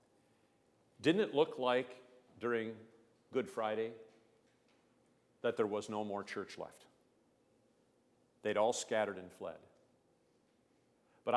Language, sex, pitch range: English, male, 100-120 Hz